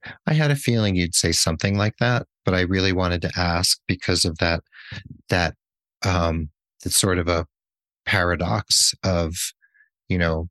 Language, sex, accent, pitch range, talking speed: English, male, American, 85-105 Hz, 160 wpm